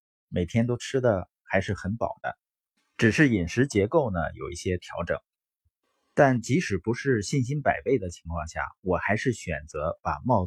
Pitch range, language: 95-130 Hz, Chinese